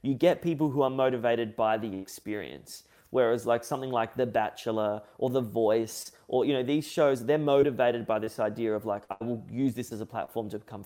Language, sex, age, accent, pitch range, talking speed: English, male, 30-49, Australian, 115-135 Hz, 215 wpm